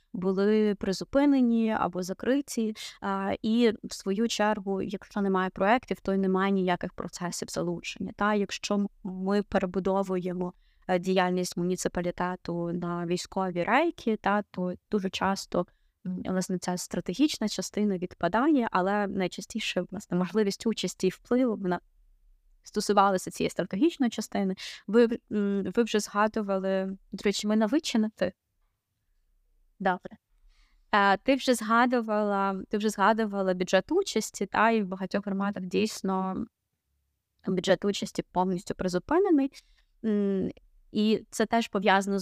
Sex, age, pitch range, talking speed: female, 20-39, 185-220 Hz, 110 wpm